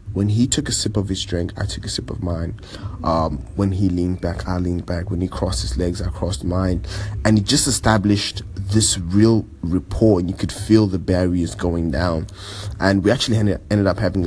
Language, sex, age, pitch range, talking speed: English, male, 20-39, 90-100 Hz, 215 wpm